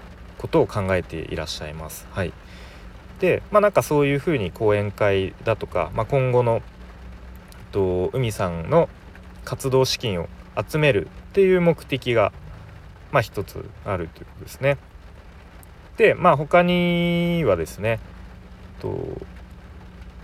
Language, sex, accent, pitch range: Japanese, male, native, 85-130 Hz